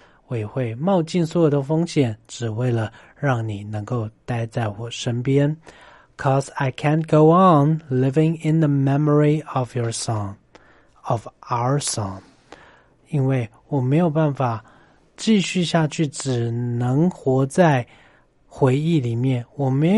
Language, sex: Chinese, male